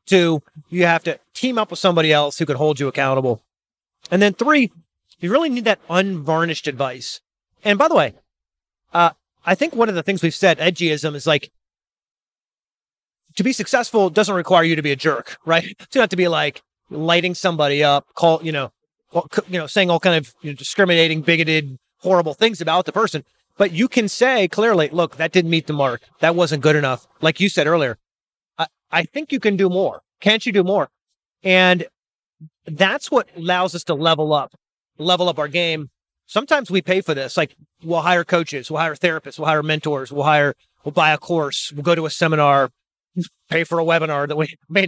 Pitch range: 155-200 Hz